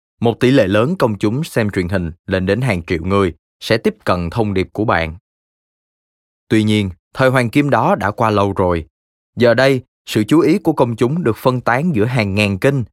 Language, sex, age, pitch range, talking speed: Vietnamese, male, 20-39, 90-125 Hz, 215 wpm